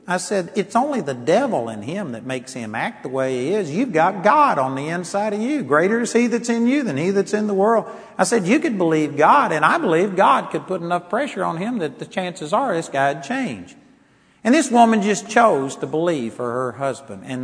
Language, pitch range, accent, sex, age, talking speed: English, 130-190 Hz, American, male, 50-69, 245 wpm